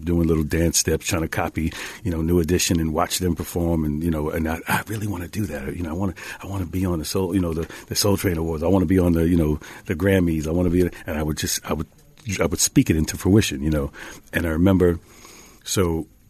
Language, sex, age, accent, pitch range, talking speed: English, male, 40-59, American, 85-100 Hz, 285 wpm